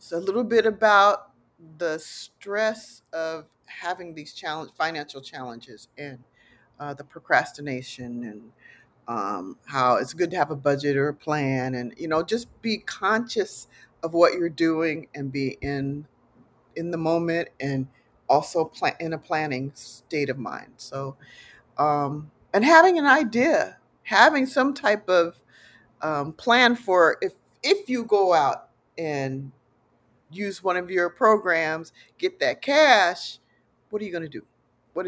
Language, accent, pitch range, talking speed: English, American, 135-175 Hz, 150 wpm